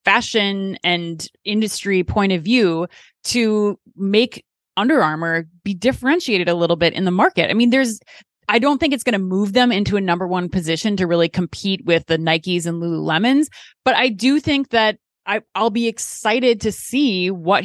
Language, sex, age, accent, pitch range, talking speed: English, female, 20-39, American, 175-220 Hz, 185 wpm